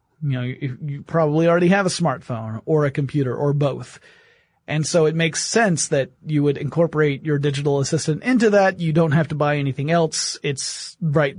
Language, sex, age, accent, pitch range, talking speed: English, male, 30-49, American, 140-170 Hz, 190 wpm